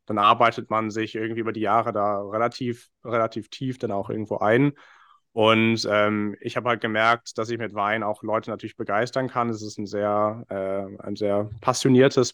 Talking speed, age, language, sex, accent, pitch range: 190 wpm, 30-49, German, male, German, 105-120 Hz